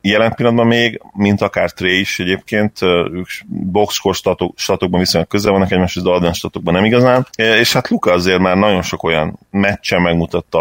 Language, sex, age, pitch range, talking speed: Hungarian, male, 30-49, 85-100 Hz, 175 wpm